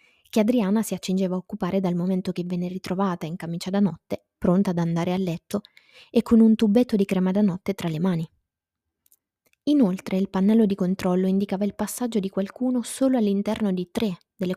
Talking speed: 190 wpm